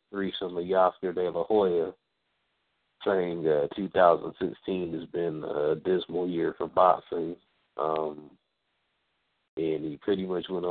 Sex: male